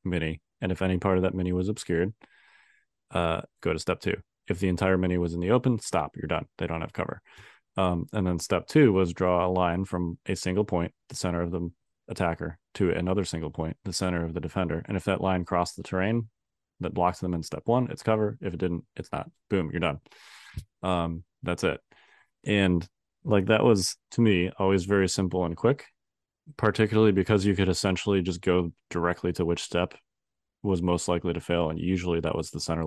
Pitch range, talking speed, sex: 85-100 Hz, 210 wpm, male